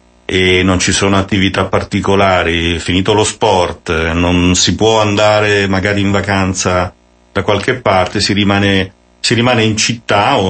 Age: 50-69